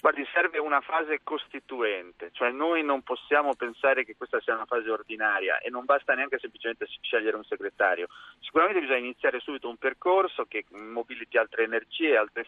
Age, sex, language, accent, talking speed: 40-59, male, Italian, native, 170 wpm